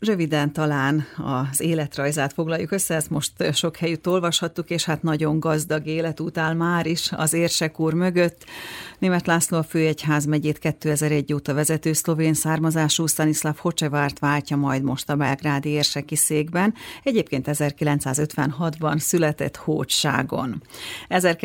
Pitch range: 140-165 Hz